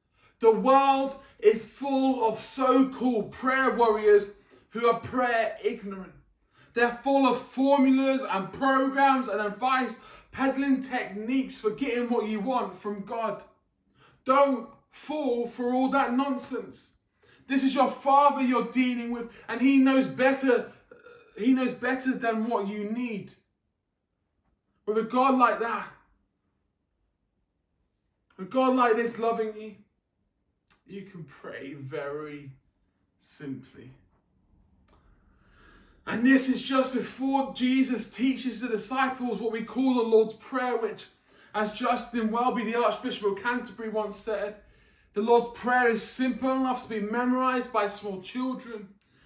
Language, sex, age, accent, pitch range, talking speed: English, male, 20-39, British, 205-260 Hz, 130 wpm